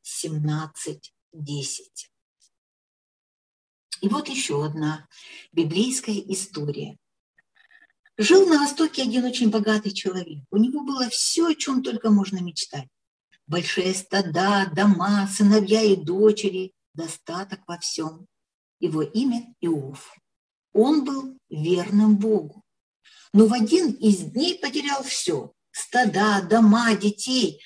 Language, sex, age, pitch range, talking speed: Russian, female, 50-69, 175-250 Hz, 105 wpm